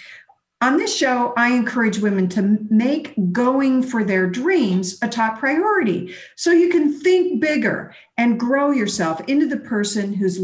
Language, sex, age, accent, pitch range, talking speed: English, female, 50-69, American, 185-270 Hz, 155 wpm